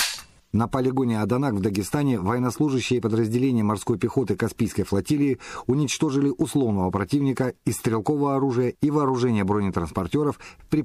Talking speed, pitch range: 115 wpm, 105-135 Hz